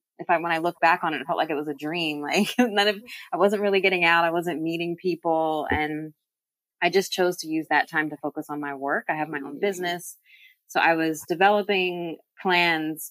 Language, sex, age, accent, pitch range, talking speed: English, female, 20-39, American, 150-180 Hz, 230 wpm